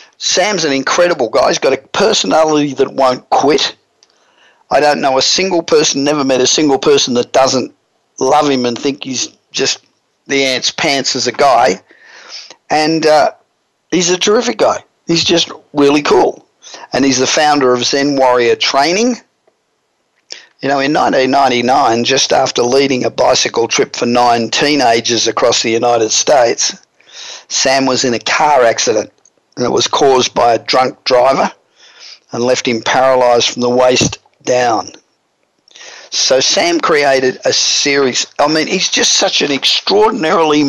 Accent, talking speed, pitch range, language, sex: Australian, 155 wpm, 125-155 Hz, English, male